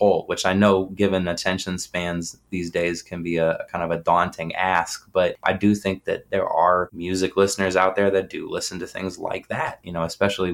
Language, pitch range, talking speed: English, 85-100 Hz, 210 wpm